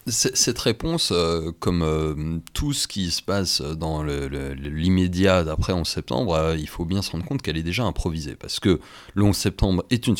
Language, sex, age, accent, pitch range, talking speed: French, male, 30-49, French, 80-100 Hz, 205 wpm